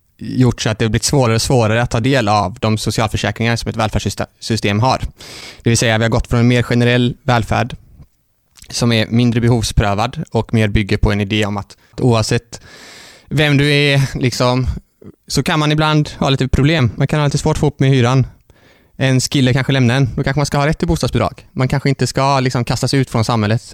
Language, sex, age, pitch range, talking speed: Swedish, male, 20-39, 110-125 Hz, 215 wpm